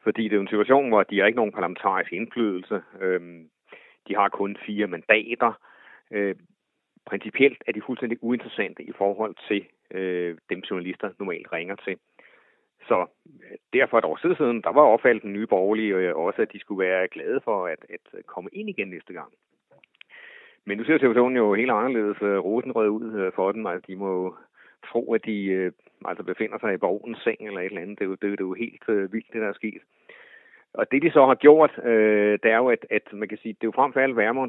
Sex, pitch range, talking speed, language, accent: male, 100-130 Hz, 200 wpm, English, Danish